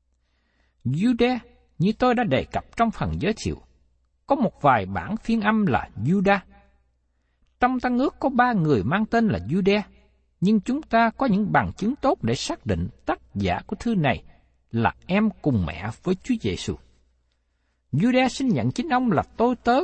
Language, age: Vietnamese, 60-79